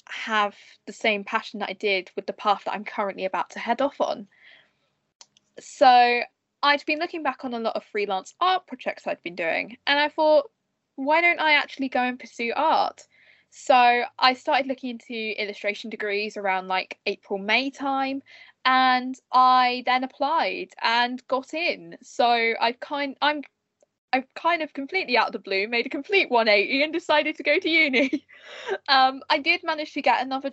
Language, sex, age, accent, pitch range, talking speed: English, female, 10-29, British, 210-285 Hz, 180 wpm